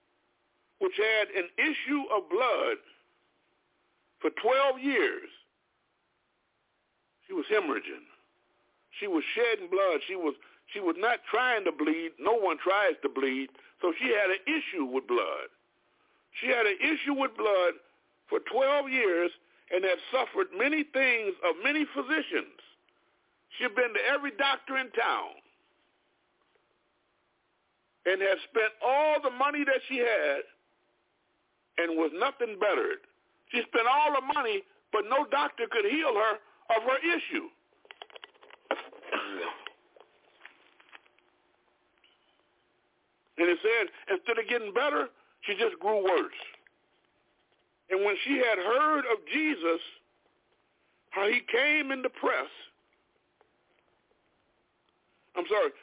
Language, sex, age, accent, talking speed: English, male, 60-79, American, 125 wpm